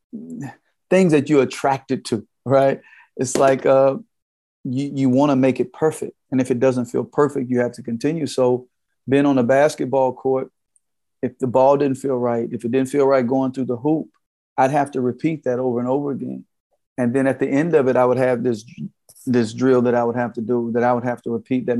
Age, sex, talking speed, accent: 40-59, male, 225 wpm, American